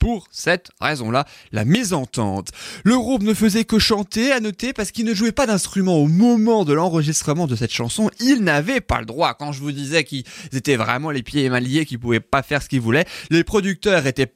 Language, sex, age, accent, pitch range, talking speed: French, male, 20-39, French, 120-170 Hz, 230 wpm